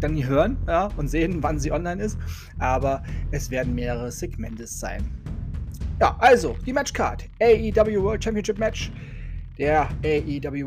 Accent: German